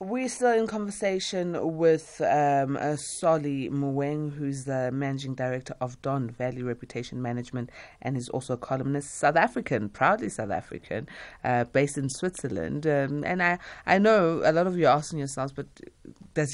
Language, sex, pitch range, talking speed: English, female, 125-150 Hz, 165 wpm